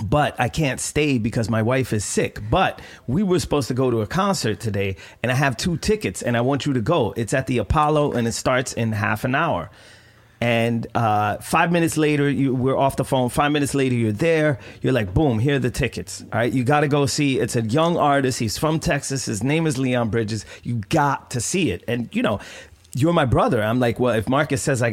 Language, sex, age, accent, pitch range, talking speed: English, male, 30-49, American, 110-145 Hz, 240 wpm